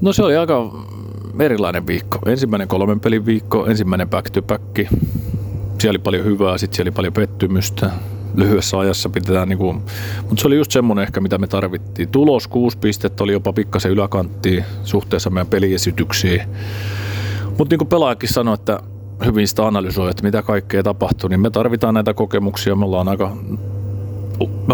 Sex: male